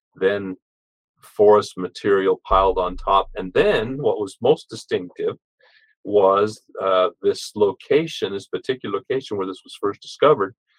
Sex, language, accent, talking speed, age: male, English, American, 135 wpm, 40-59